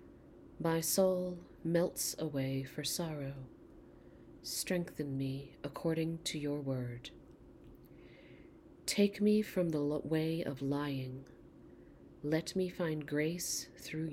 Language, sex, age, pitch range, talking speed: English, female, 40-59, 145-180 Hz, 100 wpm